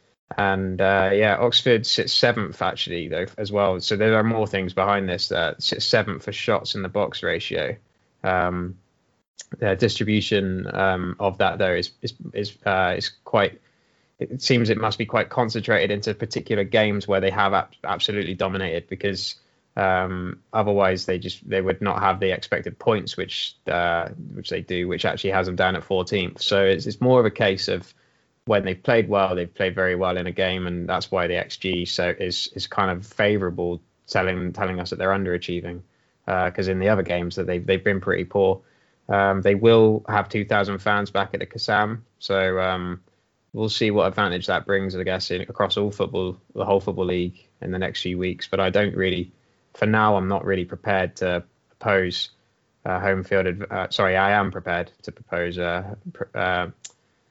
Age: 20-39